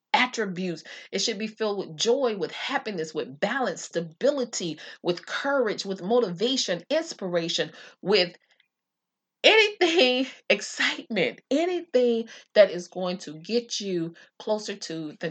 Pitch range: 170-240 Hz